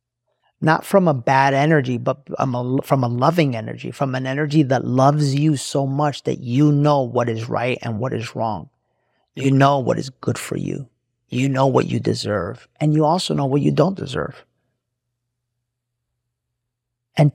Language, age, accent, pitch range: English, 30-49, American, 120-145 Hz